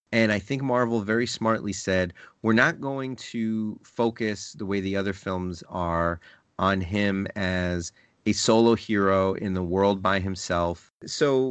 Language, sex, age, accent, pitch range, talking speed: English, male, 30-49, American, 95-115 Hz, 155 wpm